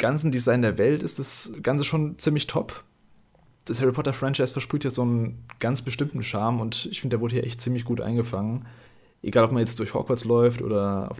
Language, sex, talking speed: German, male, 215 wpm